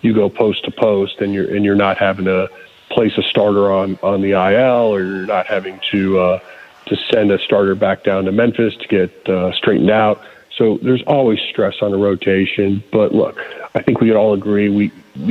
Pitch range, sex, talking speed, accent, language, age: 105-120 Hz, male, 210 wpm, American, English, 40-59